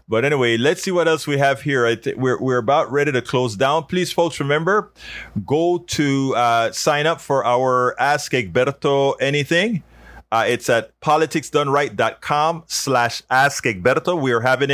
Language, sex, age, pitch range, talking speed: English, male, 30-49, 110-150 Hz, 165 wpm